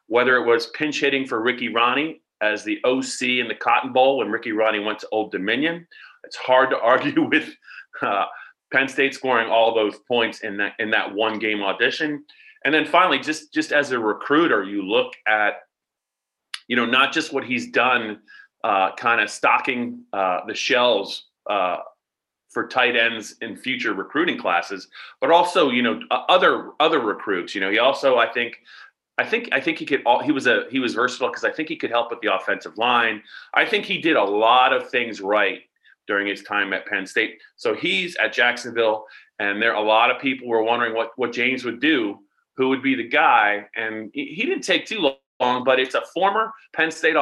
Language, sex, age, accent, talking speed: English, male, 30-49, American, 200 wpm